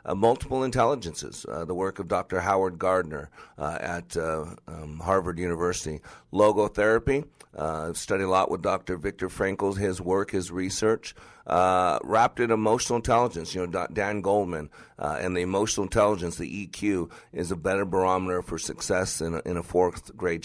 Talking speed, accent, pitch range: 160 wpm, American, 90-120 Hz